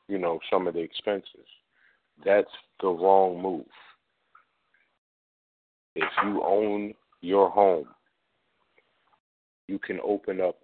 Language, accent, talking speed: English, American, 105 wpm